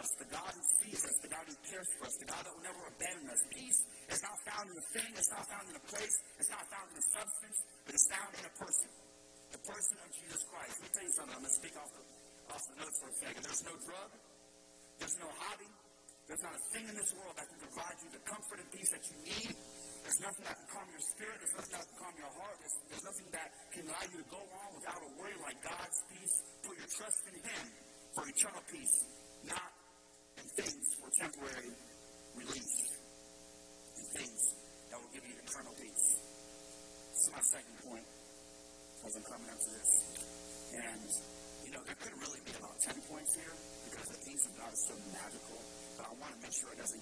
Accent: American